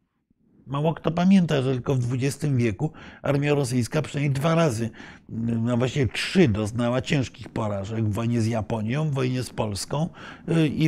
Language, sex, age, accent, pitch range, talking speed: Polish, male, 50-69, native, 115-165 Hz, 150 wpm